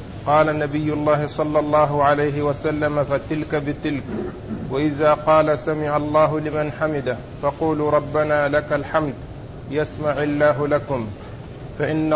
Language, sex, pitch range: Arabic, male, 145-155 Hz